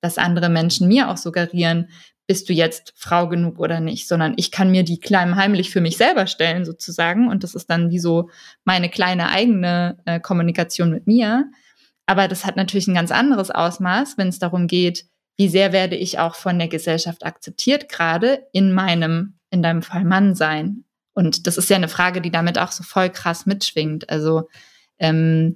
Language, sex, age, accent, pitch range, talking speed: German, female, 20-39, German, 170-195 Hz, 190 wpm